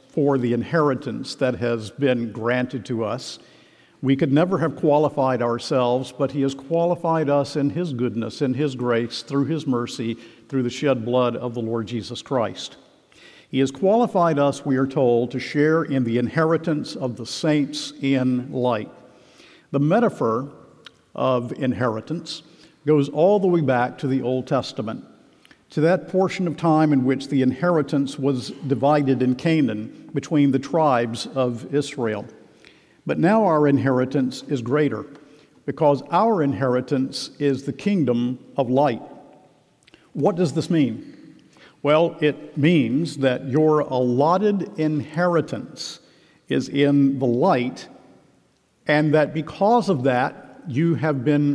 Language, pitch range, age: English, 125-155 Hz, 50-69